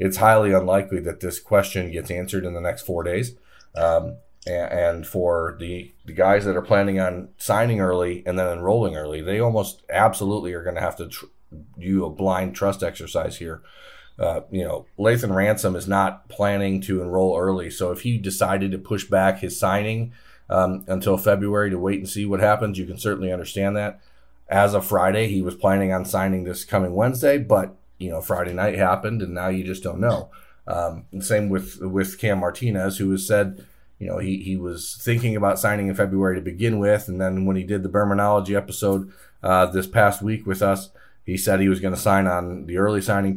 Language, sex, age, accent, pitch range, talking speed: English, male, 30-49, American, 90-100 Hz, 205 wpm